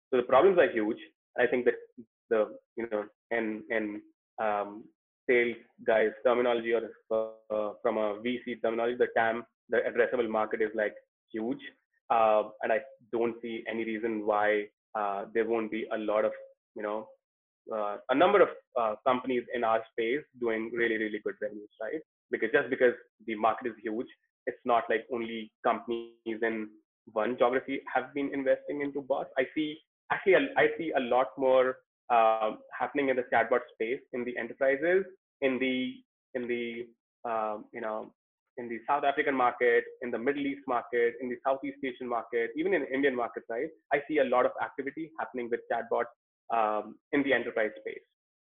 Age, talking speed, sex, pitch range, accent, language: 20-39, 175 wpm, male, 110-140 Hz, Indian, English